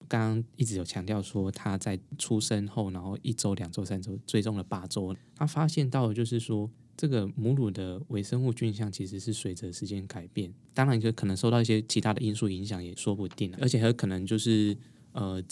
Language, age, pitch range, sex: Chinese, 10-29, 100-120 Hz, male